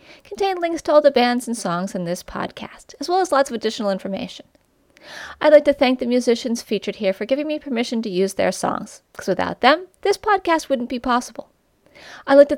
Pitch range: 205-295 Hz